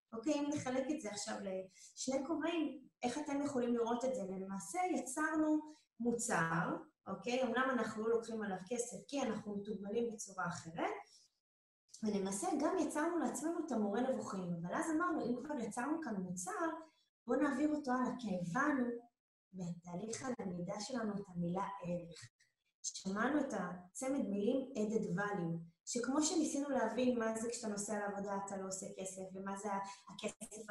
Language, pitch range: Hebrew, 195-270 Hz